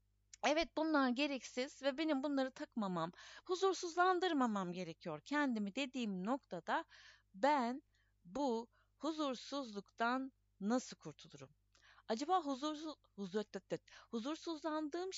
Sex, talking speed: female, 80 wpm